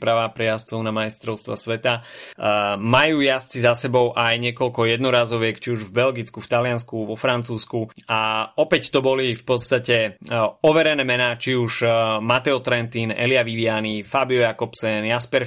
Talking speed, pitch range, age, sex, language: 145 wpm, 110-125 Hz, 30-49, male, Slovak